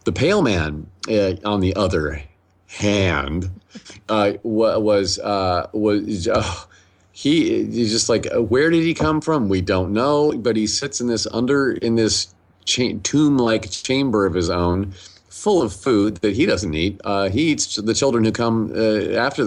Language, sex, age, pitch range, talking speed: English, male, 40-59, 95-110 Hz, 175 wpm